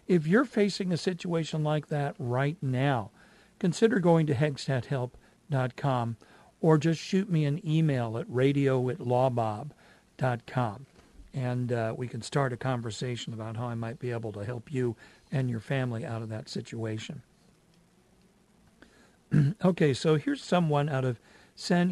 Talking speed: 140 wpm